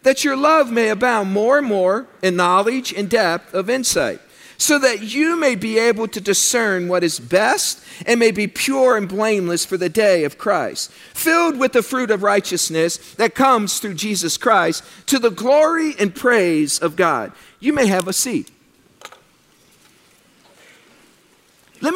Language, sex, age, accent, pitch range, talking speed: English, male, 50-69, American, 180-250 Hz, 165 wpm